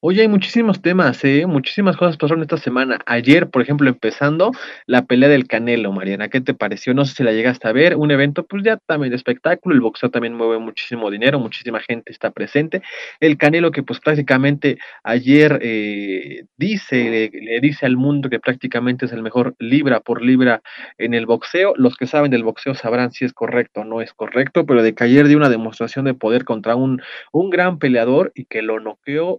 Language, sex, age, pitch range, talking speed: Spanish, male, 30-49, 120-150 Hz, 205 wpm